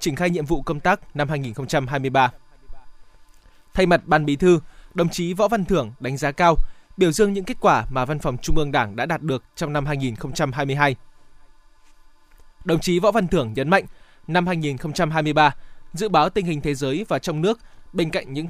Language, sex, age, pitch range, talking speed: Vietnamese, male, 20-39, 145-175 Hz, 190 wpm